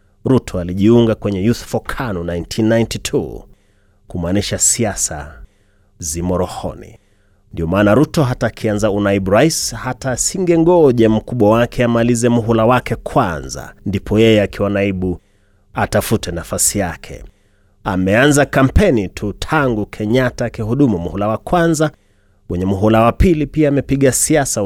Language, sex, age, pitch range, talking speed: Swahili, male, 30-49, 95-120 Hz, 120 wpm